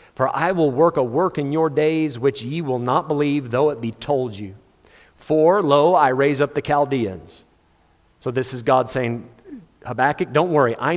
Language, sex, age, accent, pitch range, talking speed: English, male, 40-59, American, 125-155 Hz, 190 wpm